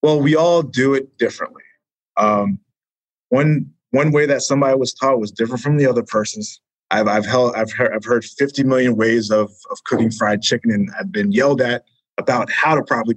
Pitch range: 115-135 Hz